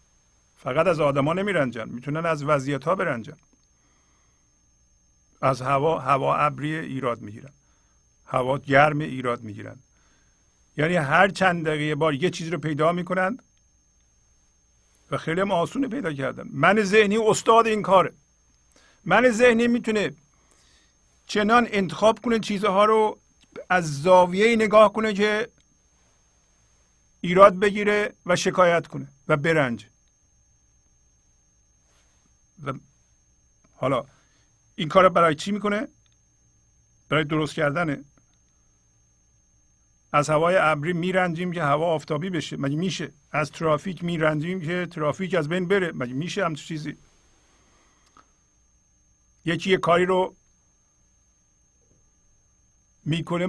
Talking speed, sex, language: 110 wpm, male, Persian